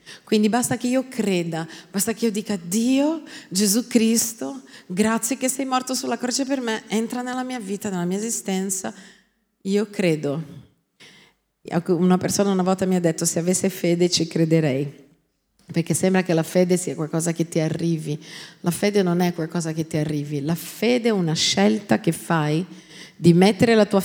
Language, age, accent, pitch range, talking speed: Italian, 40-59, native, 175-245 Hz, 175 wpm